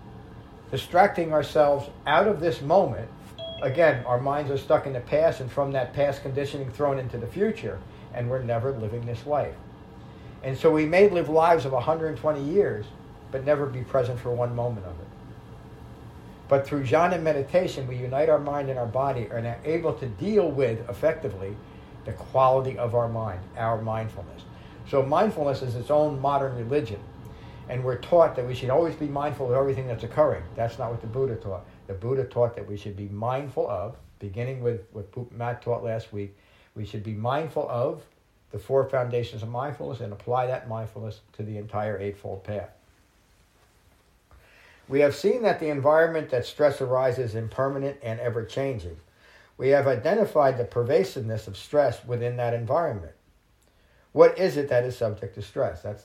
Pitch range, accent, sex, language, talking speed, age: 110-140 Hz, American, male, English, 175 wpm, 50-69